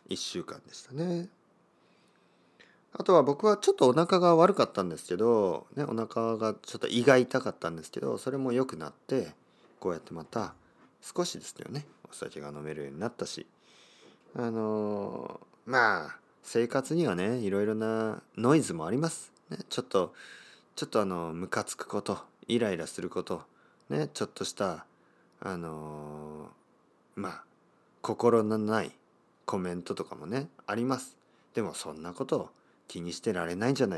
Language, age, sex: Japanese, 40-59, male